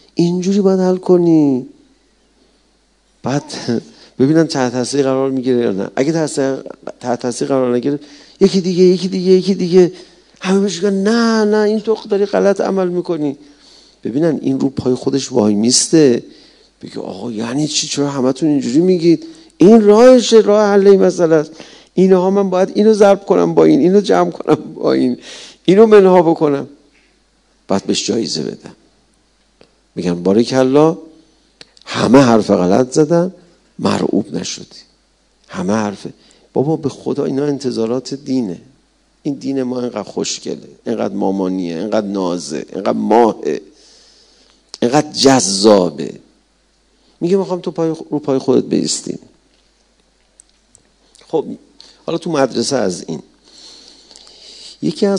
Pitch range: 125-185 Hz